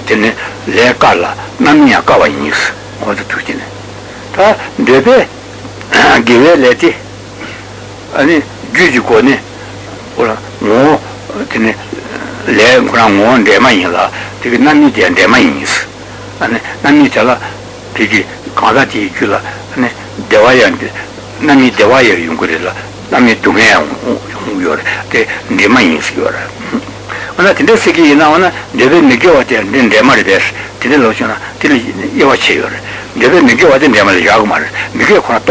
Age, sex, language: 60-79, male, Italian